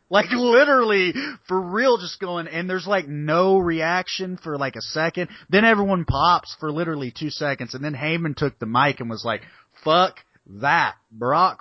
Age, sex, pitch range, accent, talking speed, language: 30-49, male, 125-185 Hz, American, 175 wpm, English